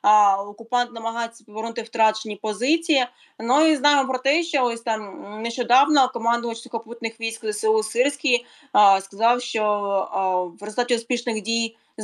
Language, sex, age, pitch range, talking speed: Ukrainian, female, 20-39, 215-245 Hz, 140 wpm